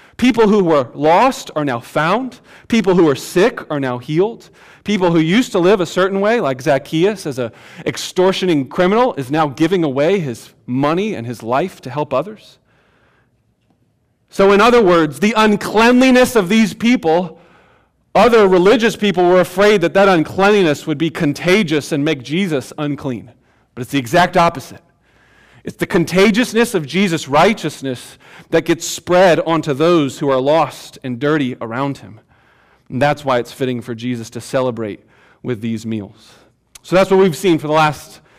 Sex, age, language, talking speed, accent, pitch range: male, 40-59, English, 165 wpm, American, 140-195 Hz